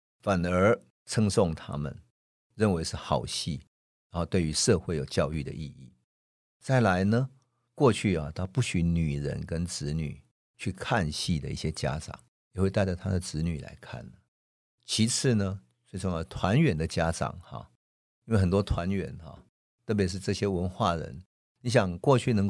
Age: 50-69